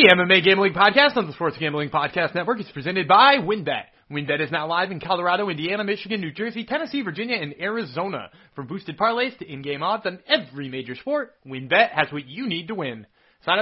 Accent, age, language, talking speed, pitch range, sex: American, 30-49, English, 205 wpm, 155-235 Hz, male